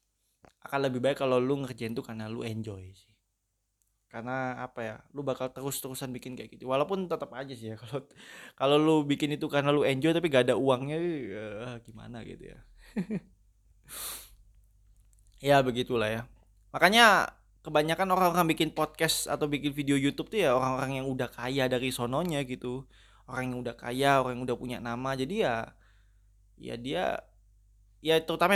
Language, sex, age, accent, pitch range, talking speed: Indonesian, male, 20-39, native, 110-145 Hz, 165 wpm